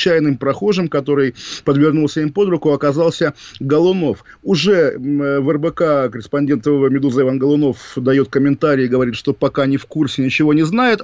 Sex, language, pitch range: male, Russian, 135-165 Hz